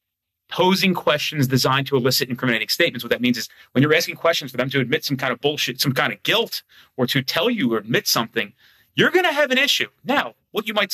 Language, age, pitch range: English, 30-49, 125-175 Hz